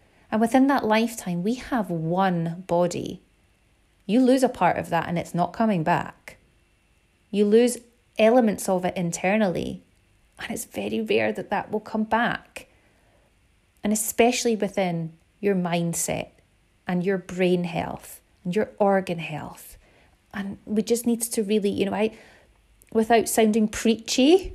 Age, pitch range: 30-49, 185-230 Hz